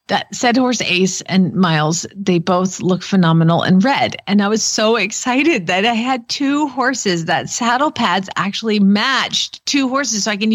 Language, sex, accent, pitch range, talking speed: English, female, American, 195-265 Hz, 180 wpm